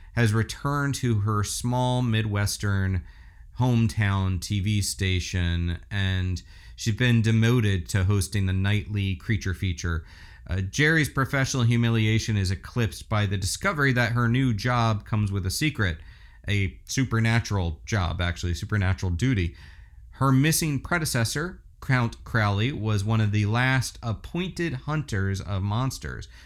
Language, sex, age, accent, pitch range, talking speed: English, male, 40-59, American, 95-125 Hz, 125 wpm